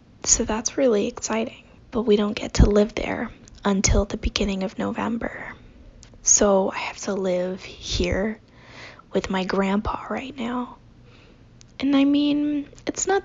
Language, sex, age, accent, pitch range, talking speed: English, female, 10-29, American, 185-240 Hz, 145 wpm